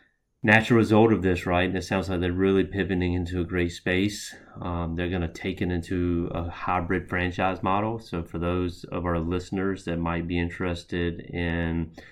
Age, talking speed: 30-49, 190 wpm